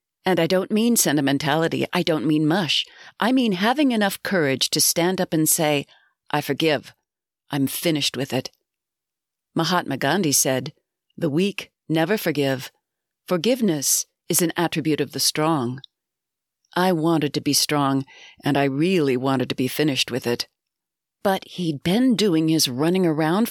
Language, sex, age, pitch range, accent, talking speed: English, female, 40-59, 145-185 Hz, American, 155 wpm